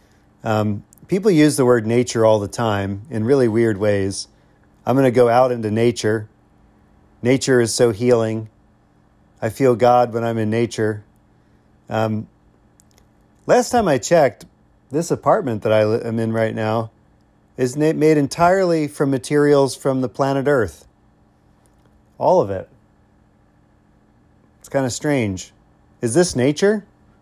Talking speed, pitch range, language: 140 wpm, 105-130 Hz, English